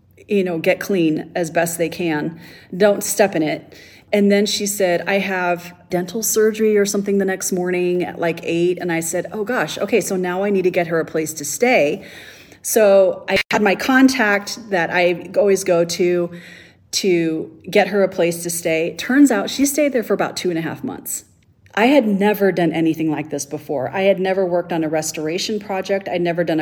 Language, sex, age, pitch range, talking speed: English, female, 30-49, 170-200 Hz, 210 wpm